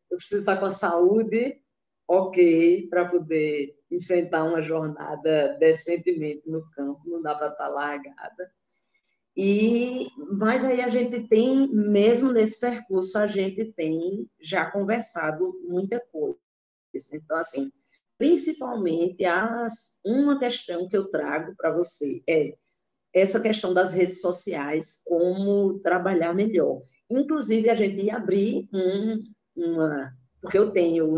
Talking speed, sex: 130 wpm, female